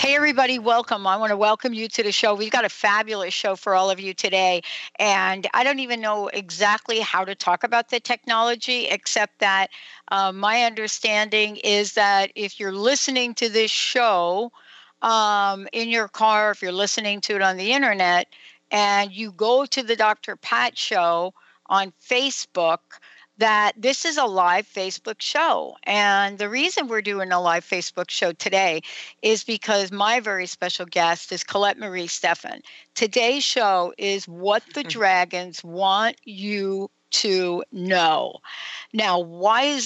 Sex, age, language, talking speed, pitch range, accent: female, 60-79, English, 165 wpm, 190-240 Hz, American